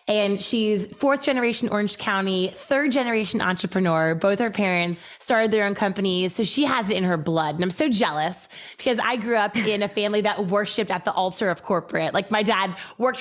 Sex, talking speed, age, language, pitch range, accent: female, 205 wpm, 20-39, English, 195-245 Hz, American